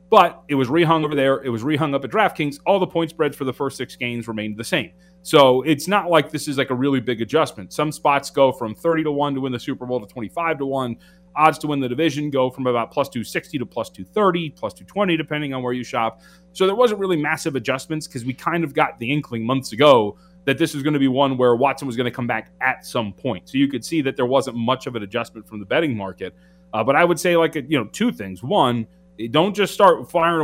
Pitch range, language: 125-170 Hz, English